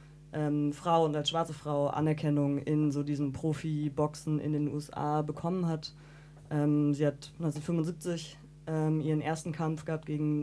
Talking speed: 150 wpm